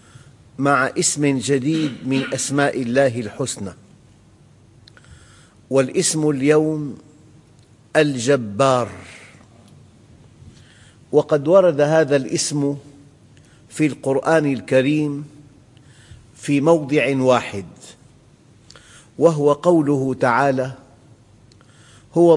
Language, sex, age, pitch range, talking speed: English, male, 50-69, 125-150 Hz, 65 wpm